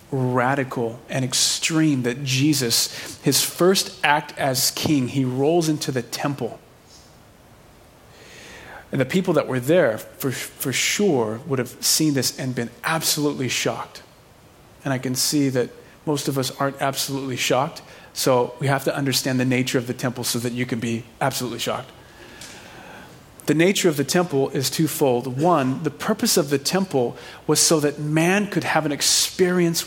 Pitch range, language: 130-170 Hz, English